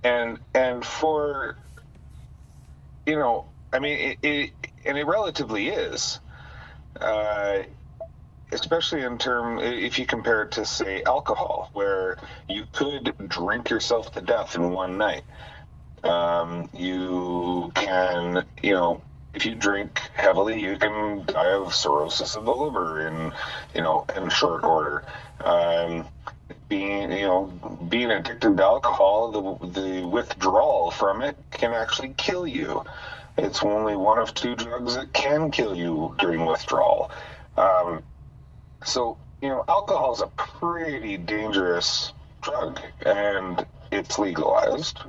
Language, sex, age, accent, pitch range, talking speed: English, male, 40-59, American, 85-120 Hz, 130 wpm